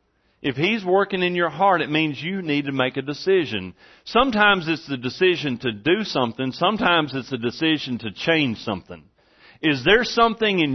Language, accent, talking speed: English, American, 180 wpm